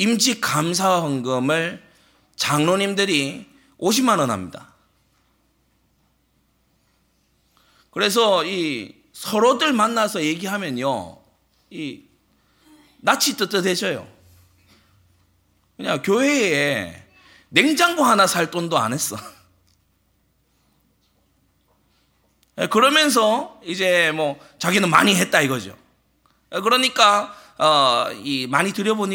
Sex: male